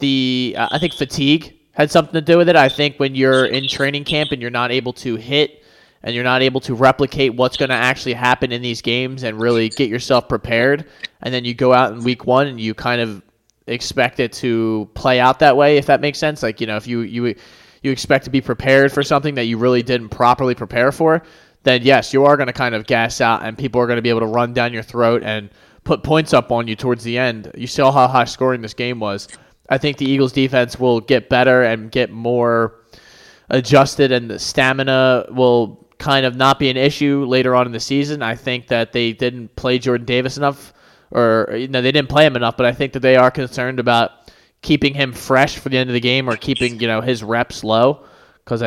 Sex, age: male, 20-39